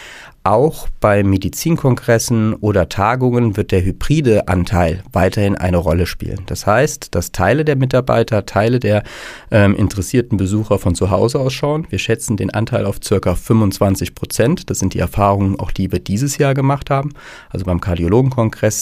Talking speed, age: 160 wpm, 40-59